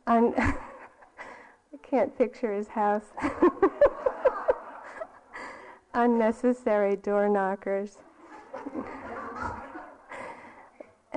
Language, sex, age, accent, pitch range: English, female, 50-69, American, 185-220 Hz